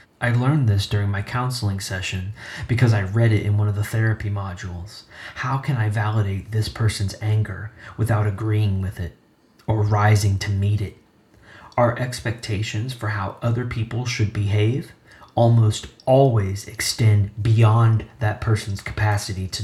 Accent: American